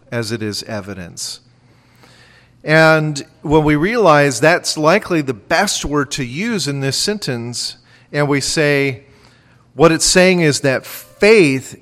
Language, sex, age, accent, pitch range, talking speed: English, male, 40-59, American, 125-165 Hz, 135 wpm